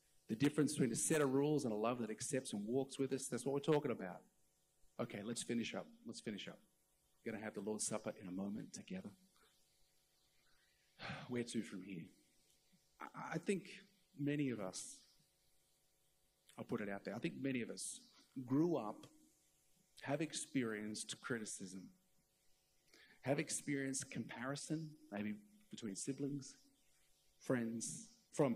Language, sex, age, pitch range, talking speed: English, male, 50-69, 115-155 Hz, 150 wpm